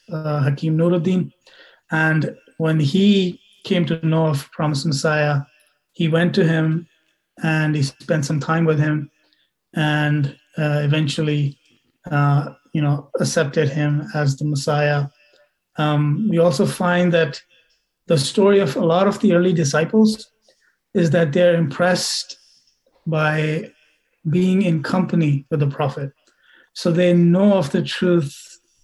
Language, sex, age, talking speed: English, male, 30-49, 135 wpm